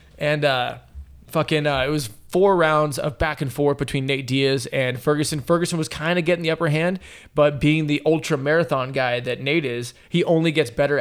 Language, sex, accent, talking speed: English, male, American, 205 wpm